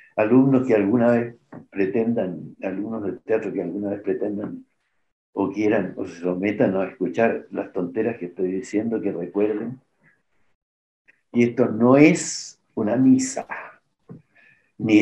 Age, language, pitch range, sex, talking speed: 60-79, Spanish, 95-130 Hz, male, 130 wpm